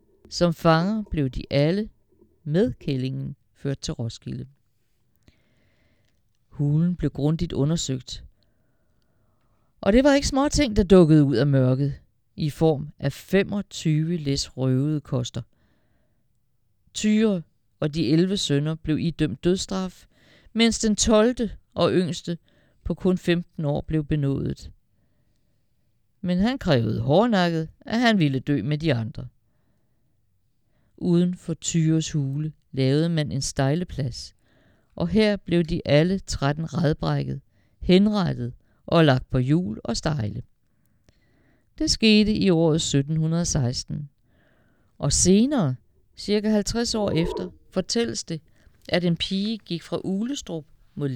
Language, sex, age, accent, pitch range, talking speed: Danish, female, 60-79, native, 125-185 Hz, 120 wpm